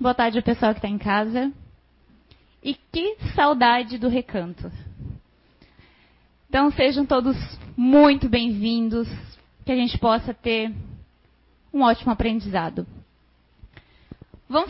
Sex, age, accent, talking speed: female, 20-39, Brazilian, 110 wpm